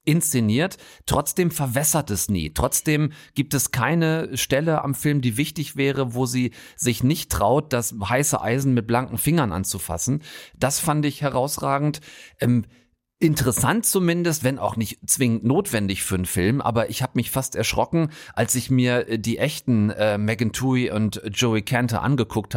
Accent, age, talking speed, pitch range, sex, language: German, 40-59, 160 wpm, 115-145 Hz, male, German